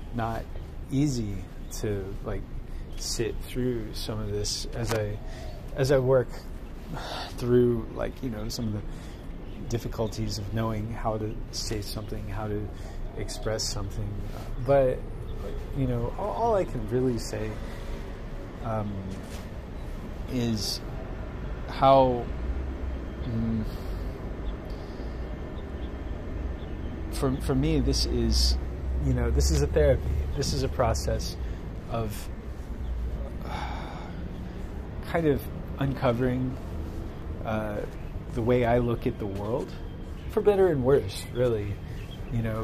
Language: English